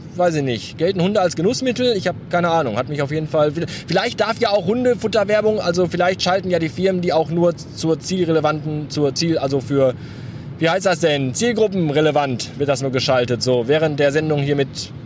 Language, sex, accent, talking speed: German, male, German, 205 wpm